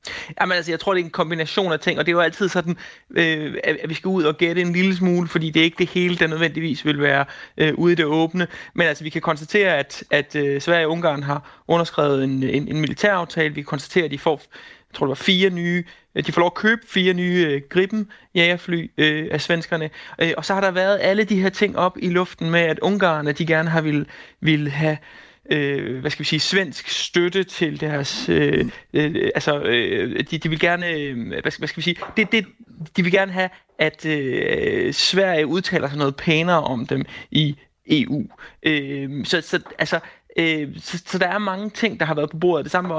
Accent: native